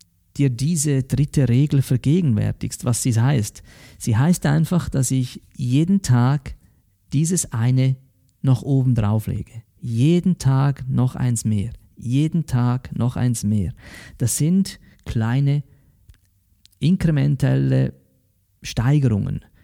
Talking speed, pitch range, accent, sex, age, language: 110 wpm, 110-140 Hz, German, male, 50-69, German